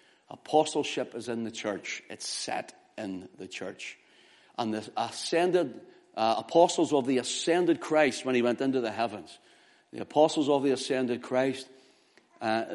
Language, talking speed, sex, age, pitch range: English, 150 wpm, male, 60-79, 125-165 Hz